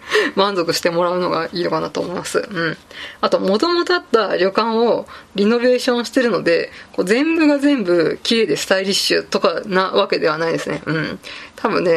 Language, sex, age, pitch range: Japanese, female, 20-39, 190-250 Hz